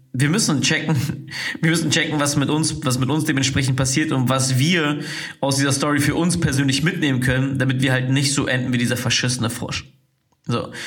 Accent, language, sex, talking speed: German, German, male, 200 wpm